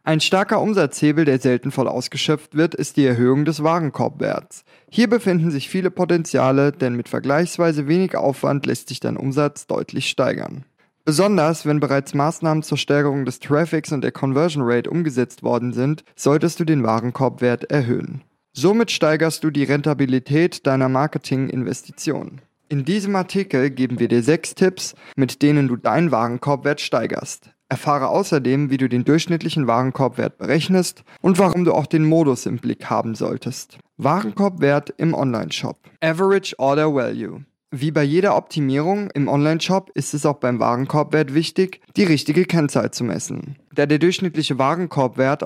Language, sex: German, male